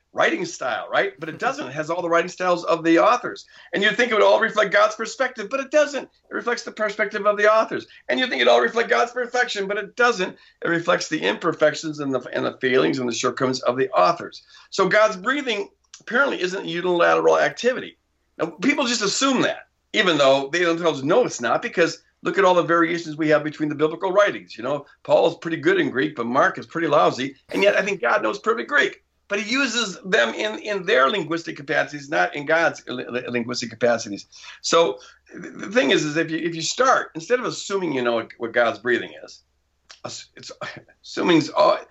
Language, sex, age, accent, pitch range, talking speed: English, male, 50-69, American, 145-230 Hz, 210 wpm